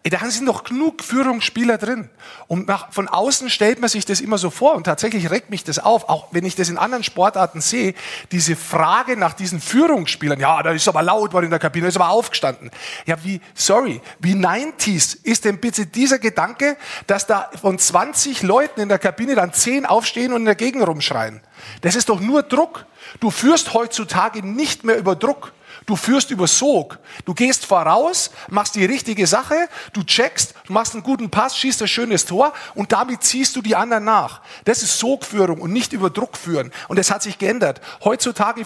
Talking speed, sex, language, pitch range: 200 wpm, male, German, 180-245 Hz